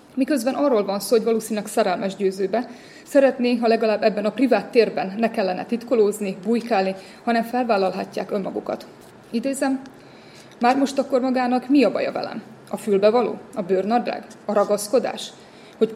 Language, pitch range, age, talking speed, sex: Hungarian, 200-245 Hz, 30-49, 145 wpm, female